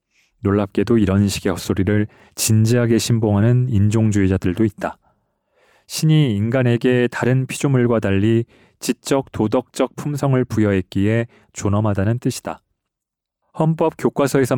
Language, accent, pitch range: Korean, native, 110-135 Hz